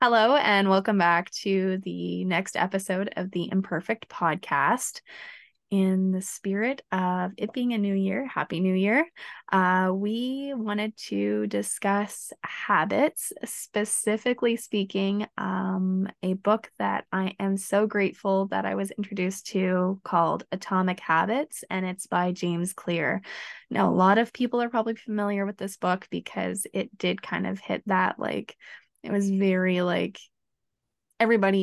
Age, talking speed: 20-39, 145 wpm